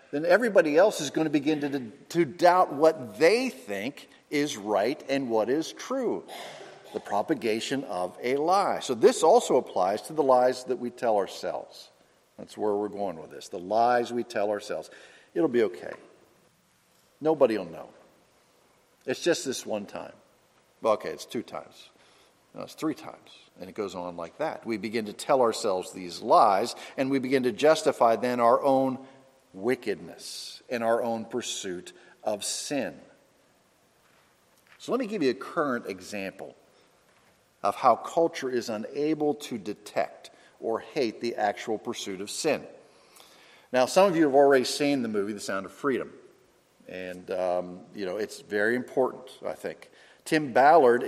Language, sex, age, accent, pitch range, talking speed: English, male, 50-69, American, 110-140 Hz, 165 wpm